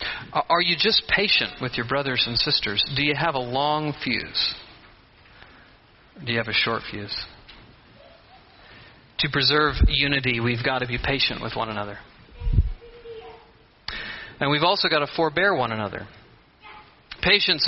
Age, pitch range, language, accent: 40-59, 140-225 Hz, English, American